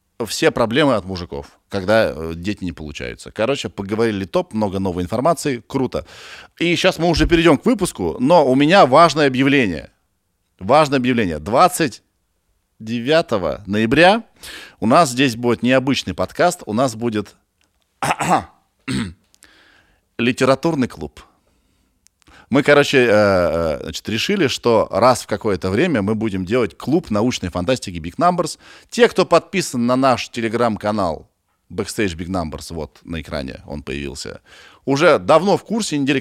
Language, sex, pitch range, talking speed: Russian, male, 95-145 Hz, 130 wpm